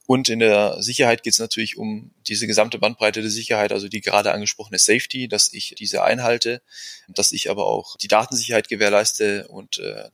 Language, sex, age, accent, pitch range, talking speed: English, male, 20-39, German, 110-135 Hz, 185 wpm